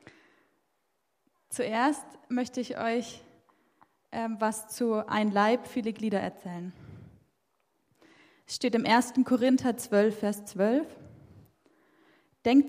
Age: 10-29